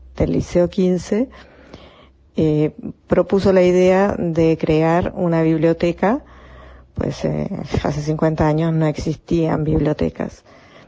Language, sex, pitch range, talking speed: Spanish, female, 155-180 Hz, 105 wpm